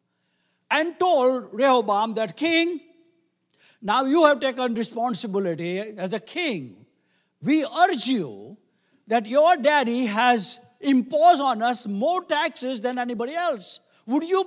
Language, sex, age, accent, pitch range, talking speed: English, male, 60-79, Indian, 175-290 Hz, 125 wpm